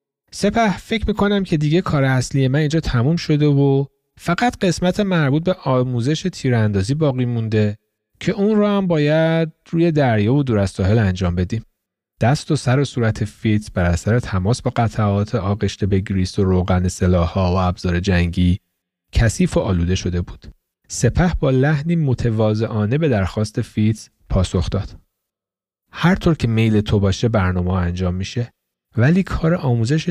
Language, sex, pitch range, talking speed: Persian, male, 105-155 Hz, 150 wpm